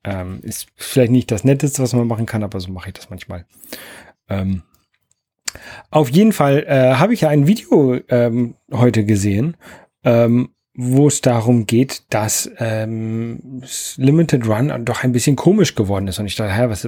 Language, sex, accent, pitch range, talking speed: German, male, German, 125-170 Hz, 170 wpm